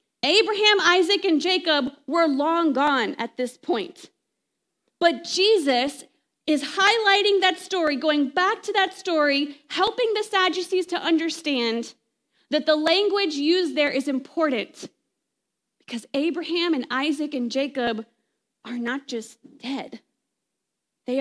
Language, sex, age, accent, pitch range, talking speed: English, female, 30-49, American, 255-370 Hz, 125 wpm